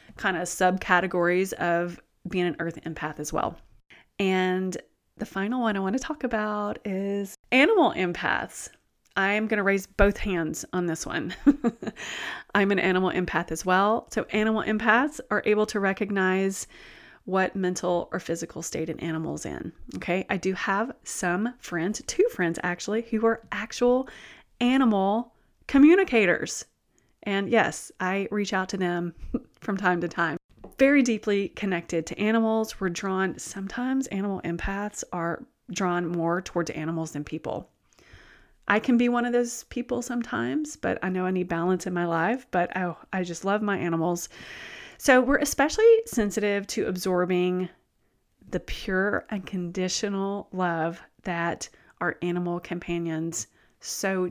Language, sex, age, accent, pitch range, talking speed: English, female, 30-49, American, 175-215 Hz, 150 wpm